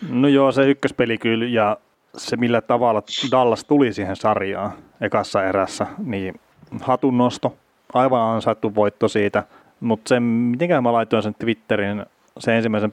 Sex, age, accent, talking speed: male, 30-49, native, 140 wpm